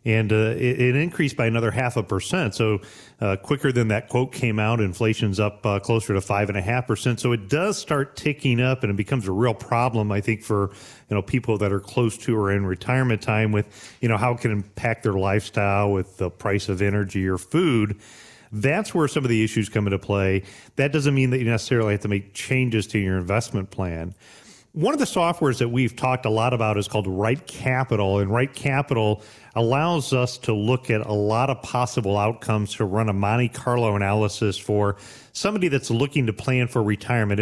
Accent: American